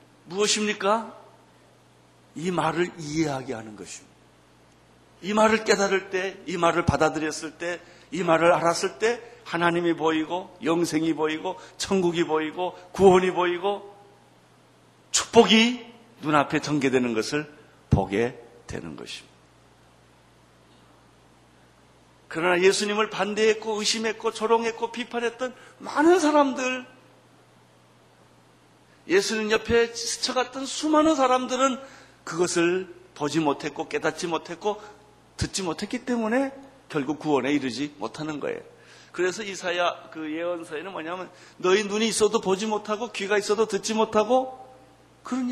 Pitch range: 155-220 Hz